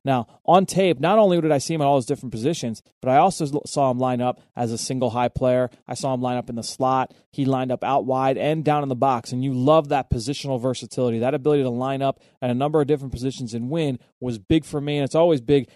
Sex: male